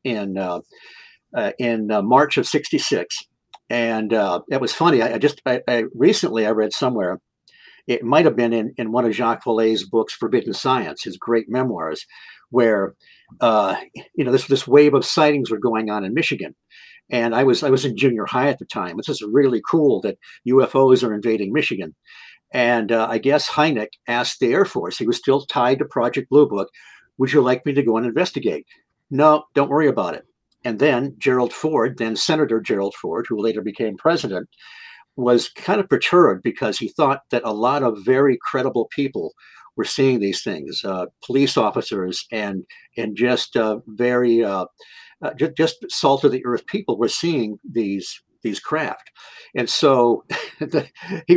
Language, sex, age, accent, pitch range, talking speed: English, male, 50-69, American, 110-135 Hz, 185 wpm